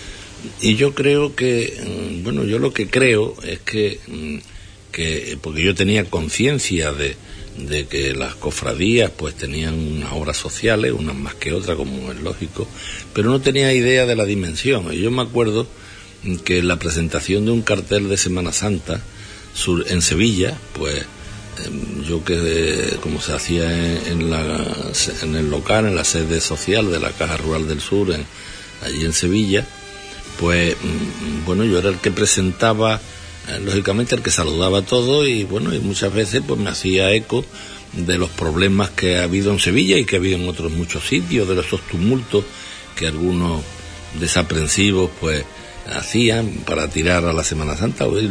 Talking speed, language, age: 170 wpm, Spanish, 60-79